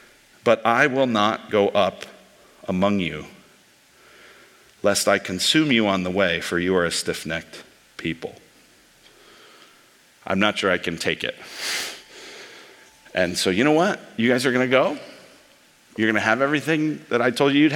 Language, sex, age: English, male, 50-69